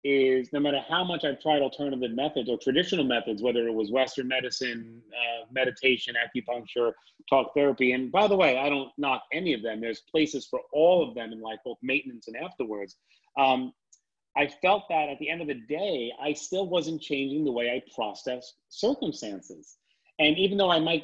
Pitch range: 130-160 Hz